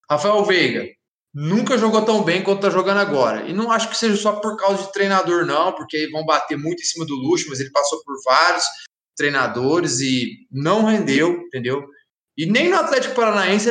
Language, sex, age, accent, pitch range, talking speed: Portuguese, male, 20-39, Brazilian, 145-200 Hz, 195 wpm